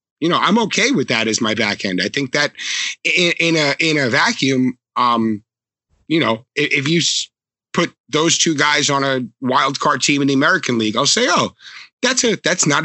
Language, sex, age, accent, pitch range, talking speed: English, male, 30-49, American, 120-160 Hz, 210 wpm